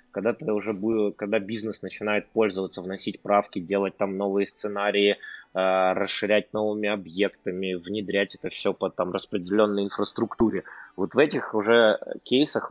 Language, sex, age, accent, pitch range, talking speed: Russian, male, 20-39, native, 95-115 Hz, 130 wpm